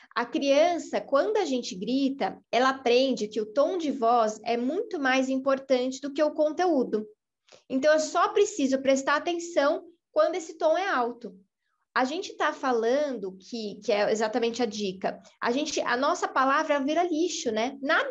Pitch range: 235-310 Hz